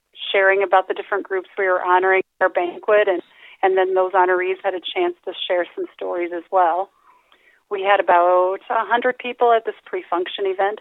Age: 30-49